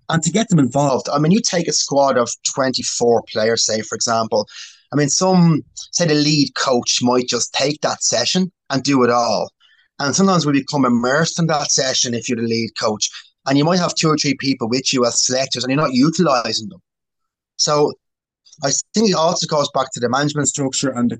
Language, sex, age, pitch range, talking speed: English, male, 30-49, 130-165 Hz, 215 wpm